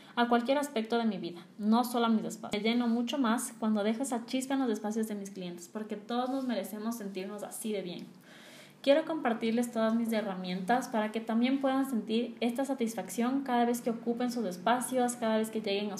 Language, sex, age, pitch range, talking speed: Spanish, female, 20-39, 205-250 Hz, 210 wpm